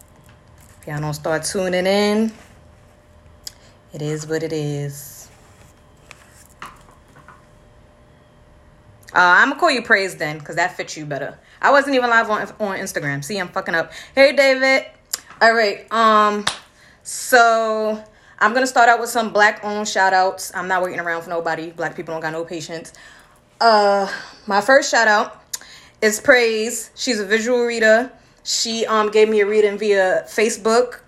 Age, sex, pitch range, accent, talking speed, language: 20-39, female, 170-220 Hz, American, 155 wpm, English